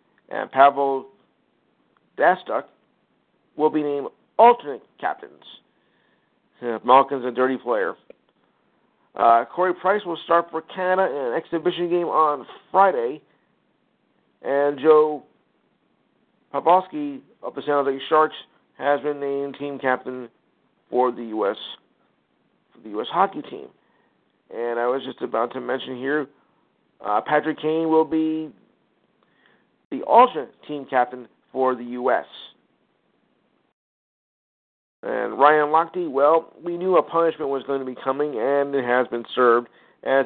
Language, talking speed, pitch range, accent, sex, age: English, 125 wpm, 130-155 Hz, American, male, 50-69